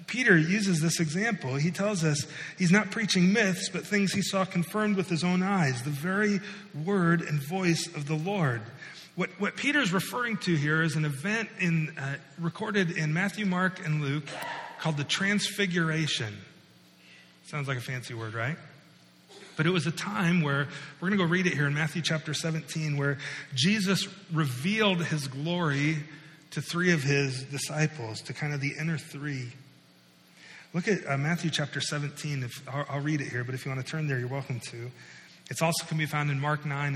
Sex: male